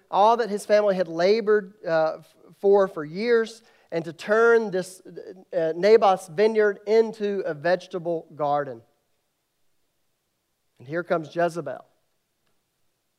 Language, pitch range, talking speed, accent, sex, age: English, 170-215 Hz, 115 wpm, American, male, 40-59